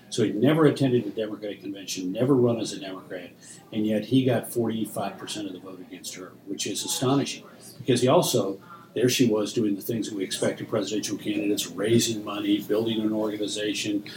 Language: English